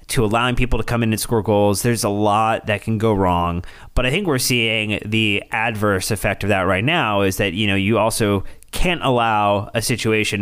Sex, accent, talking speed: male, American, 220 wpm